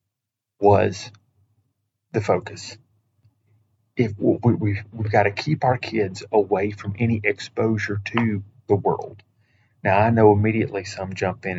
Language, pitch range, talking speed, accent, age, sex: English, 105-120 Hz, 125 wpm, American, 40-59, male